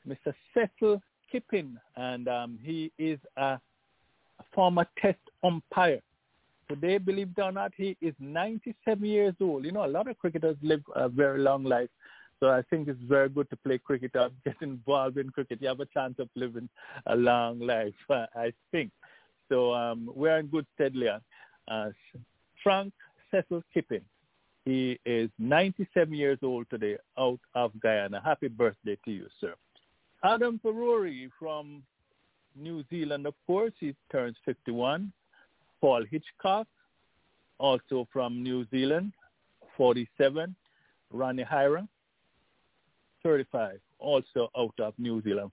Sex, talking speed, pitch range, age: male, 140 wpm, 125-180 Hz, 50-69